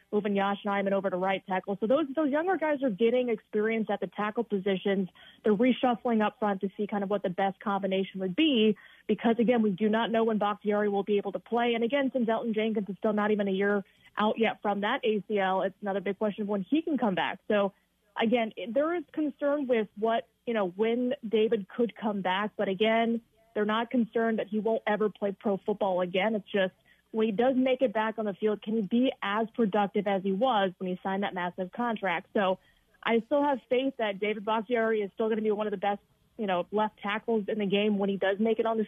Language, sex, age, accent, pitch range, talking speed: English, female, 30-49, American, 200-230 Hz, 240 wpm